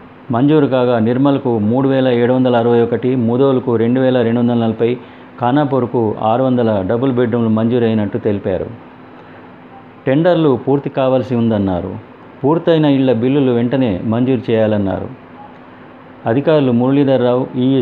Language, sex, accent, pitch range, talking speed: Telugu, male, native, 110-130 Hz, 120 wpm